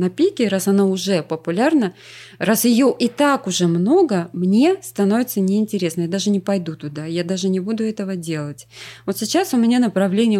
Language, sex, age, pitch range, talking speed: Russian, female, 20-39, 175-225 Hz, 180 wpm